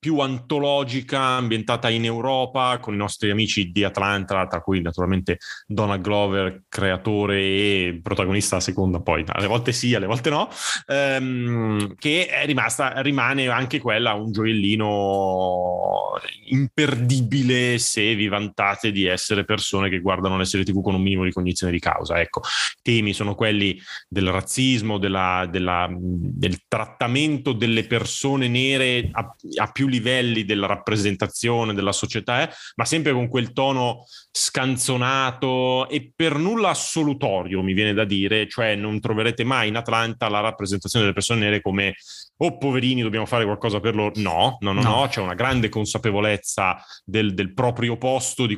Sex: male